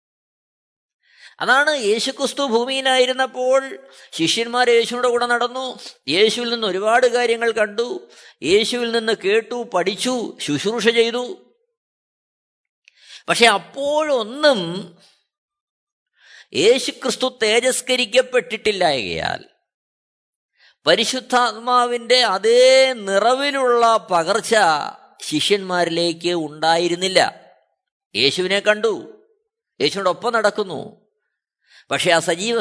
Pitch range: 200-260 Hz